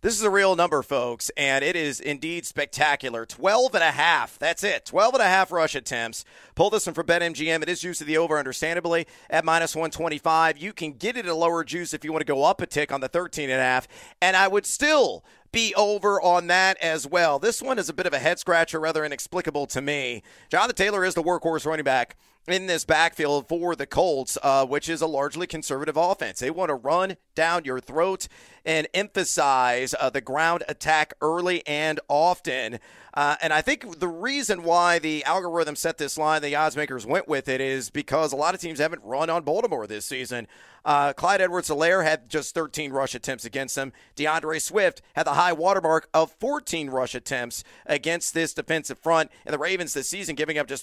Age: 40-59